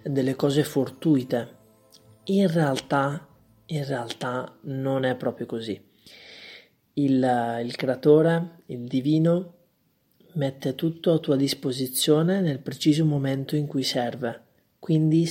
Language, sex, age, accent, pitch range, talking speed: Italian, male, 30-49, native, 130-160 Hz, 110 wpm